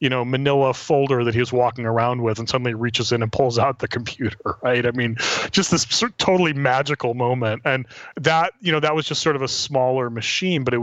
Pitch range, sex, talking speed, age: 115-150 Hz, male, 225 wpm, 30-49